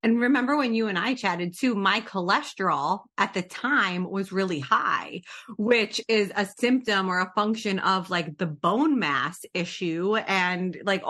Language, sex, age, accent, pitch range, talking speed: English, female, 30-49, American, 180-220 Hz, 170 wpm